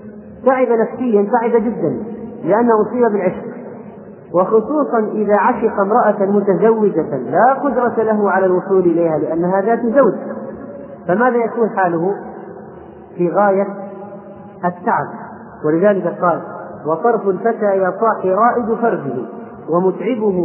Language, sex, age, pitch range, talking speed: Arabic, male, 40-59, 175-215 Hz, 105 wpm